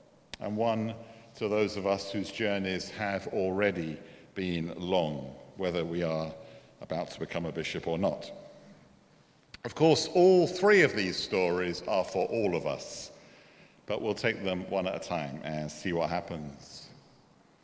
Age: 50-69